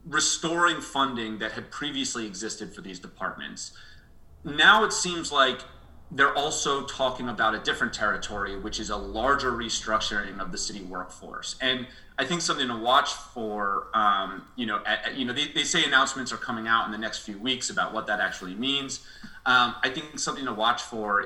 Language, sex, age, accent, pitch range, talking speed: English, male, 30-49, American, 105-135 Hz, 185 wpm